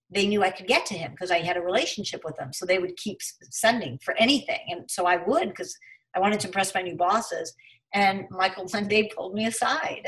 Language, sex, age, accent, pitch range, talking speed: English, female, 50-69, American, 180-210 Hz, 240 wpm